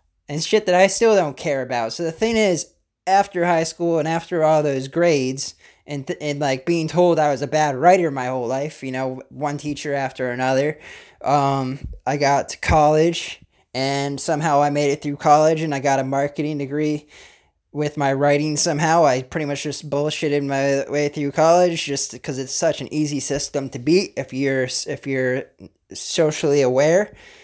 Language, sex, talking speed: English, male, 185 wpm